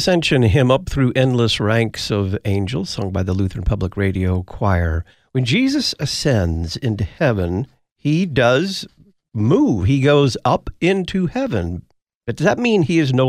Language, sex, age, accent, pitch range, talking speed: English, male, 50-69, American, 100-135 Hz, 160 wpm